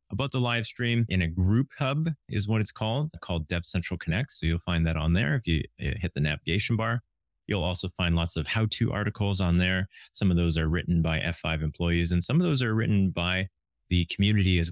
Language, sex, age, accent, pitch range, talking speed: English, male, 30-49, American, 85-115 Hz, 225 wpm